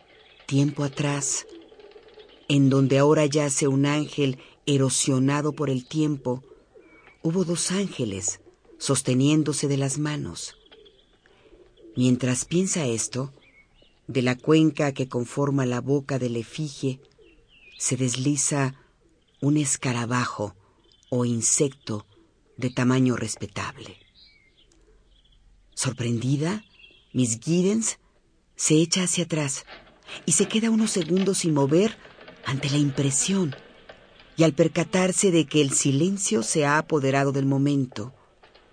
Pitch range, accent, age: 130-170 Hz, Mexican, 50-69